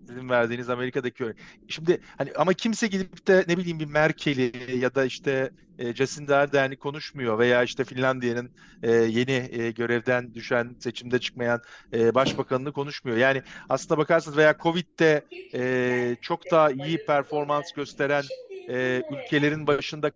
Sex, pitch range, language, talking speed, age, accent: male, 130-185 Hz, Turkish, 135 wpm, 50-69, native